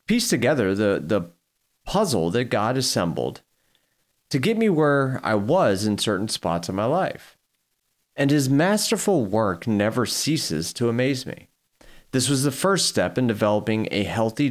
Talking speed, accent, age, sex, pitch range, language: 155 wpm, American, 40-59, male, 105-145 Hz, English